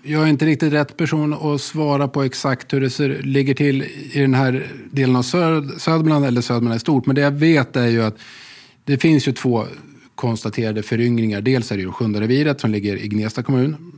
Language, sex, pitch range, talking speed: Swedish, male, 105-140 Hz, 205 wpm